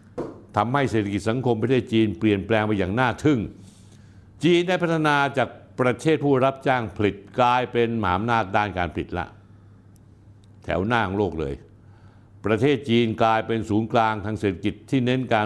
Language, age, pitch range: Thai, 60-79, 100-120 Hz